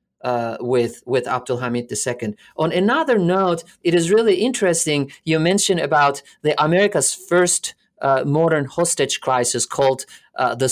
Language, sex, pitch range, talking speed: English, male, 130-160 Hz, 145 wpm